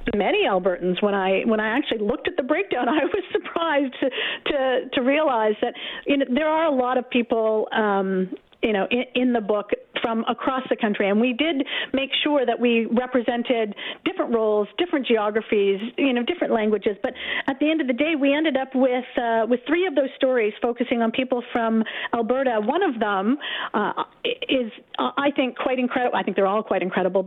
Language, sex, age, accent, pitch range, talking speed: English, female, 50-69, American, 225-275 Hz, 200 wpm